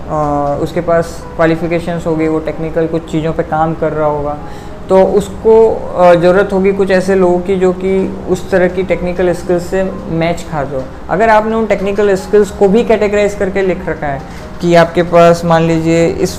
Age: 20-39